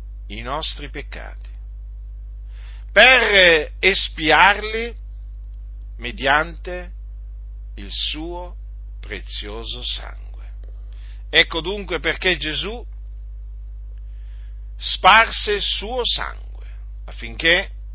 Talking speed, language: 65 wpm, Italian